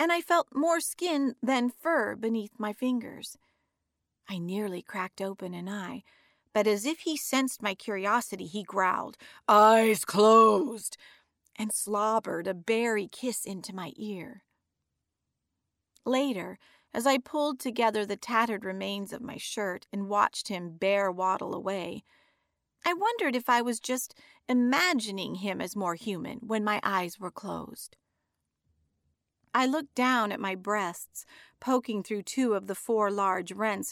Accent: American